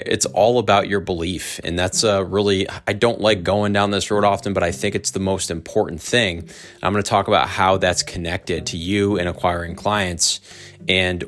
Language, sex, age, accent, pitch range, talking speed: English, male, 20-39, American, 90-105 Hz, 205 wpm